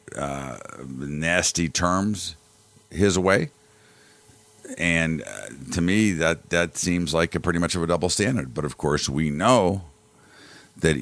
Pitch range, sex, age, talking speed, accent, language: 80-100 Hz, male, 50-69, 140 wpm, American, English